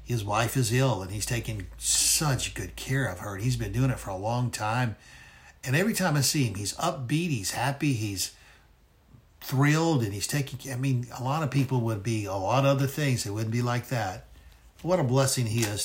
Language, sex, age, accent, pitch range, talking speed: English, male, 60-79, American, 115-150 Hz, 225 wpm